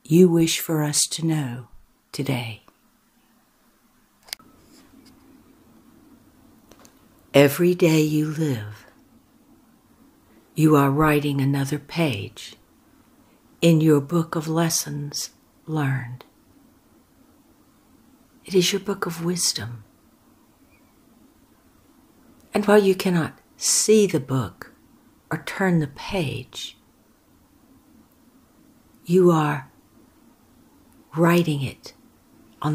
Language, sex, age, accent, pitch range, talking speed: English, female, 60-79, American, 145-185 Hz, 80 wpm